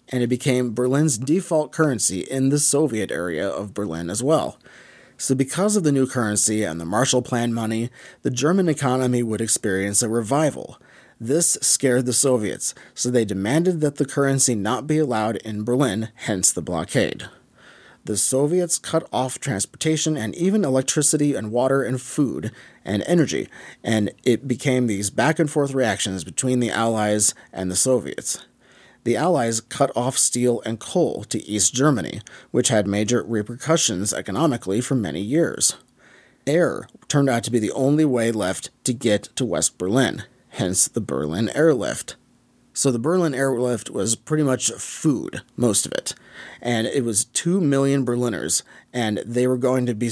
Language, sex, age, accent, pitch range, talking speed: English, male, 30-49, American, 110-135 Hz, 160 wpm